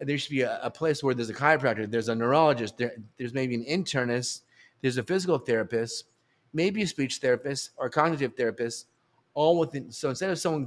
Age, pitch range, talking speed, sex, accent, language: 30-49, 120-150 Hz, 200 wpm, male, American, English